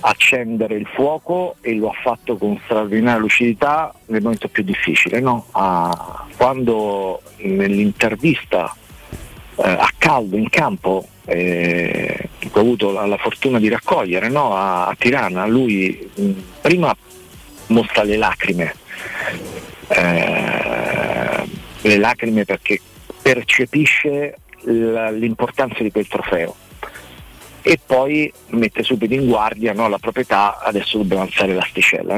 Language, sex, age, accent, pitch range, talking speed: Italian, male, 50-69, native, 105-125 Hz, 120 wpm